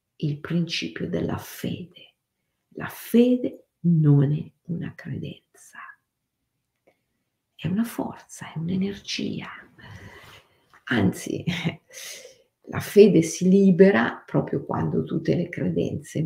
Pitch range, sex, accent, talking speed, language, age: 160-230 Hz, female, native, 90 wpm, Italian, 50-69